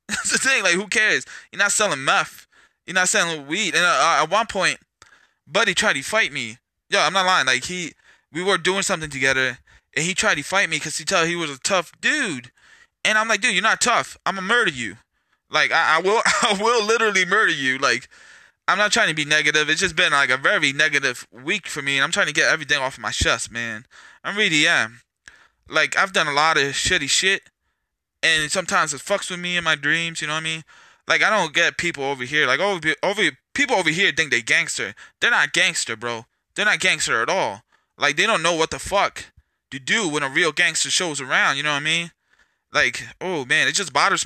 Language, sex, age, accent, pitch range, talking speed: English, male, 20-39, American, 140-195 Hz, 235 wpm